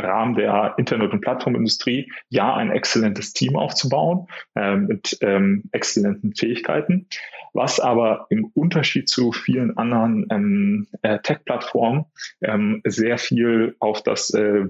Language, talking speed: German, 125 wpm